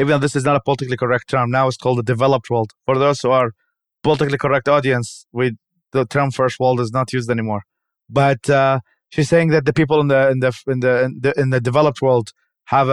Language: English